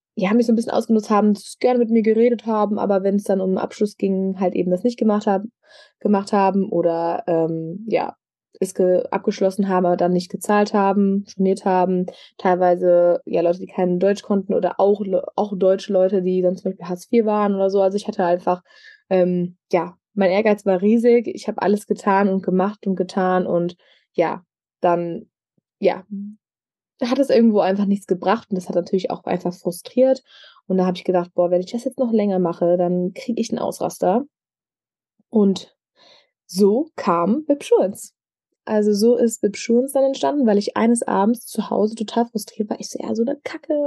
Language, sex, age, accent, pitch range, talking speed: German, female, 20-39, German, 190-235 Hz, 190 wpm